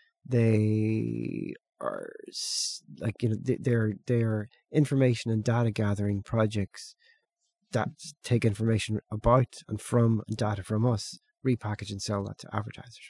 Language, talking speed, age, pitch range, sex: English, 135 wpm, 30-49, 110-140 Hz, male